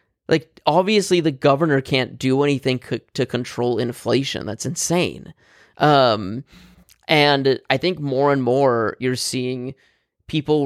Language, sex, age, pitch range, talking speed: English, male, 20-39, 125-155 Hz, 125 wpm